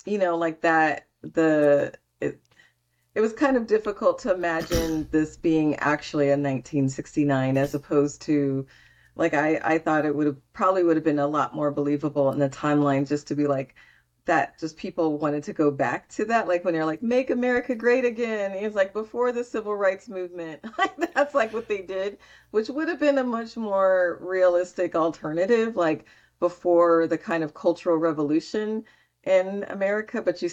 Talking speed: 185 wpm